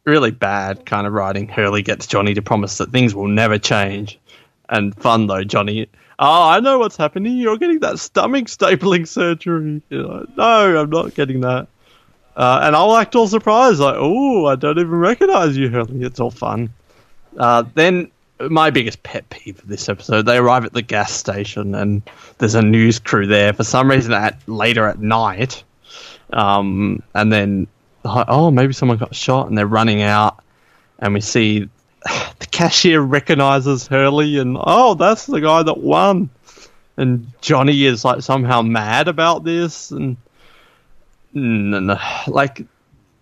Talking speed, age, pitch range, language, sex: 165 wpm, 20-39, 110-170 Hz, English, male